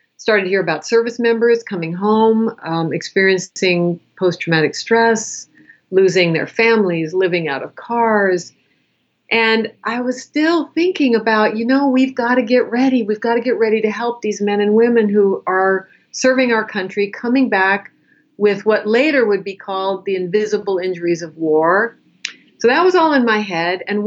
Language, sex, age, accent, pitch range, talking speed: English, female, 50-69, American, 180-225 Hz, 165 wpm